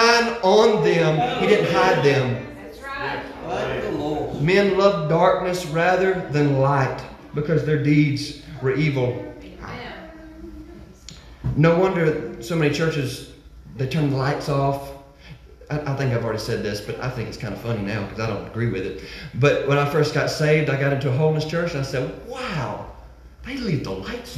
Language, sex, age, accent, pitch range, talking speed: English, male, 30-49, American, 125-185 Hz, 165 wpm